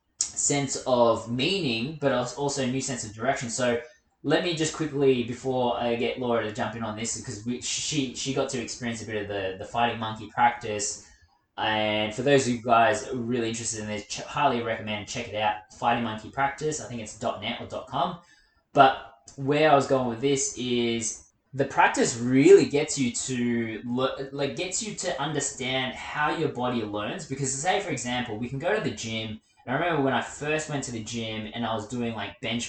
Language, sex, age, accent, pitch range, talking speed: English, male, 20-39, Australian, 110-135 Hz, 205 wpm